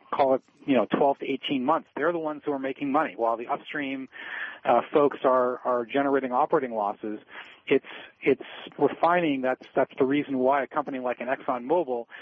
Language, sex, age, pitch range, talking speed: English, male, 40-59, 125-155 Hz, 185 wpm